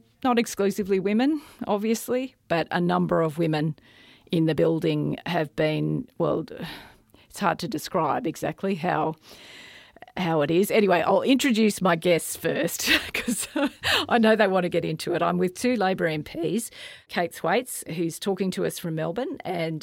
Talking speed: 160 wpm